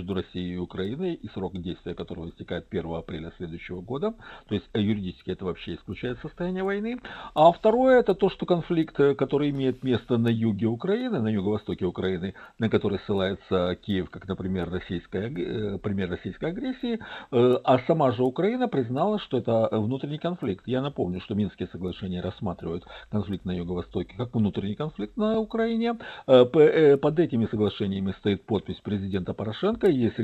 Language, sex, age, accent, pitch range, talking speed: Russian, male, 50-69, native, 95-150 Hz, 150 wpm